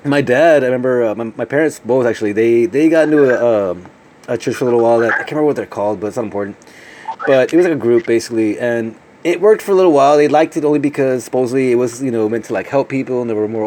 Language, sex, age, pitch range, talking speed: English, male, 30-49, 115-145 Hz, 290 wpm